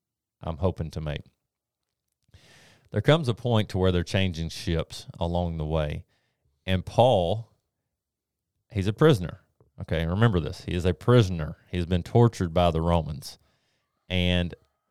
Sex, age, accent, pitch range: male, 30-49, American, 85-110 Hz